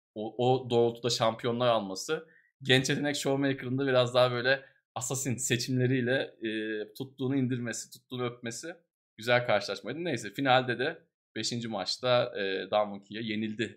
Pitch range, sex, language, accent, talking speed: 100-125 Hz, male, Turkish, native, 120 wpm